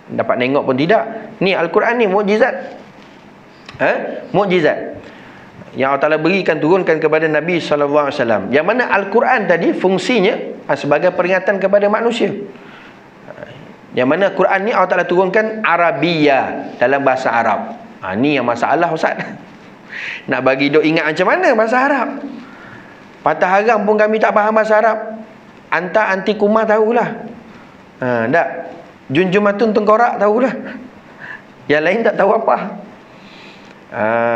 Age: 30-49